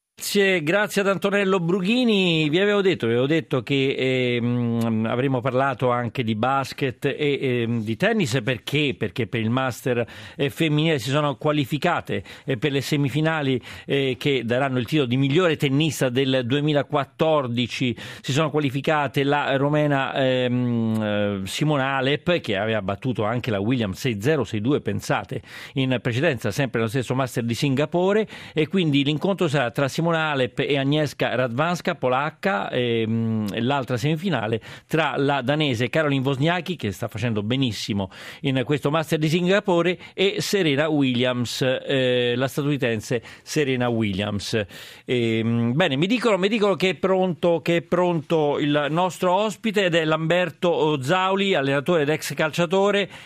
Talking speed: 145 wpm